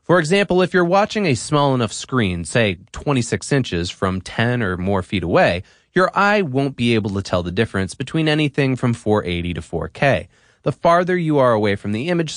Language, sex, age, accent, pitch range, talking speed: English, male, 30-49, American, 100-155 Hz, 200 wpm